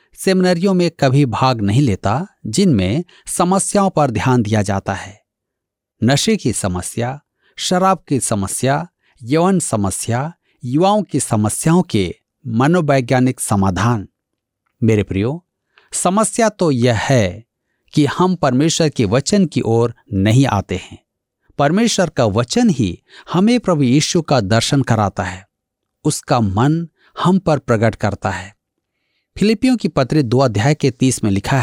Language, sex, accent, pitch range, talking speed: Hindi, male, native, 110-180 Hz, 135 wpm